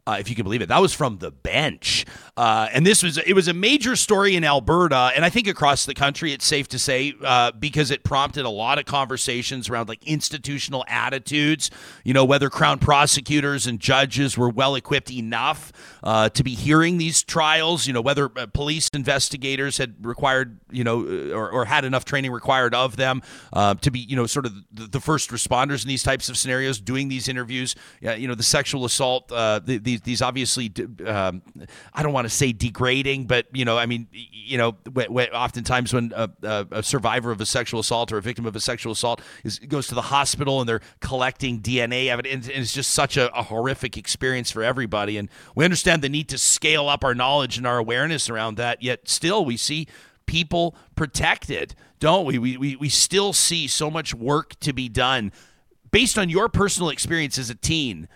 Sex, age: male, 40-59